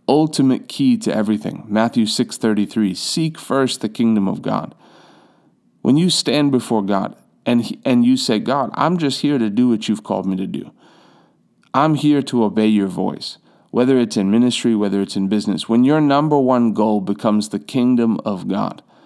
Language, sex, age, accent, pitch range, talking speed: English, male, 40-59, American, 110-140 Hz, 185 wpm